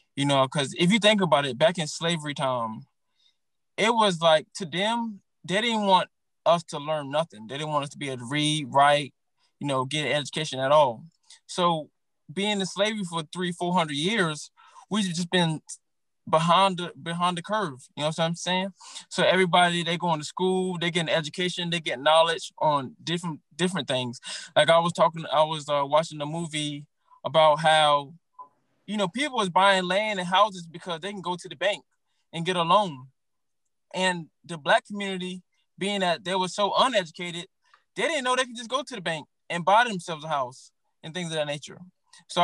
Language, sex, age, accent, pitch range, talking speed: English, male, 20-39, American, 155-195 Hz, 200 wpm